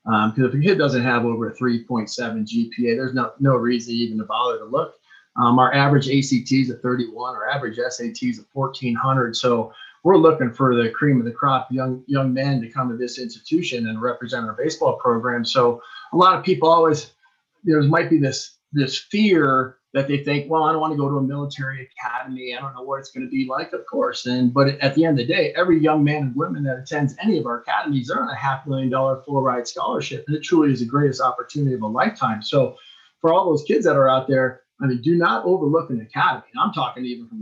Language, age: English, 30-49